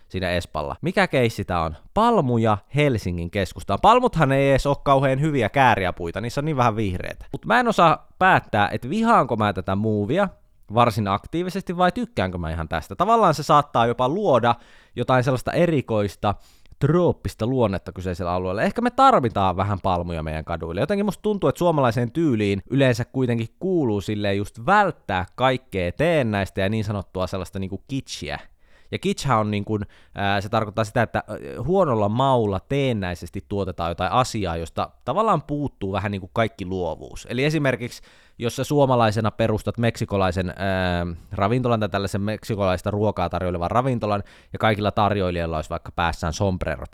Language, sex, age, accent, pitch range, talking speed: Finnish, male, 20-39, native, 95-130 Hz, 155 wpm